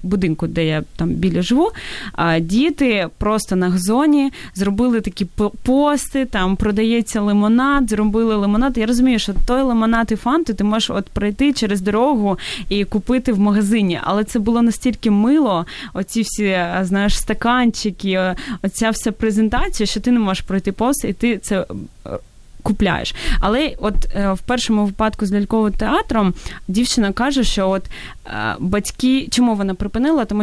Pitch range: 195-235 Hz